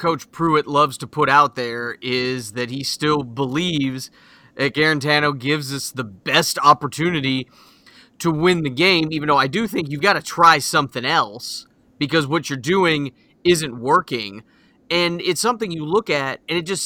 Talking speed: 175 wpm